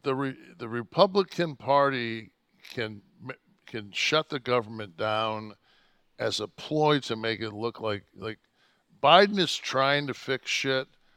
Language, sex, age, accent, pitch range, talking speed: English, male, 60-79, American, 115-170 Hz, 140 wpm